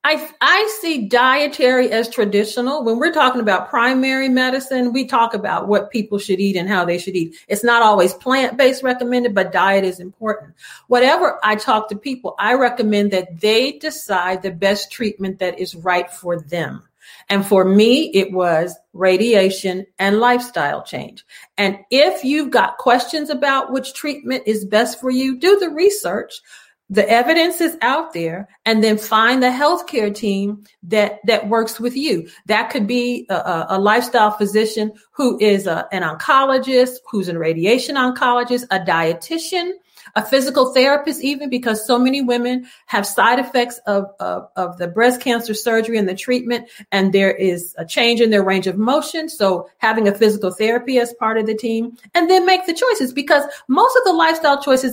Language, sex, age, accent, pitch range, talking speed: English, female, 40-59, American, 200-260 Hz, 175 wpm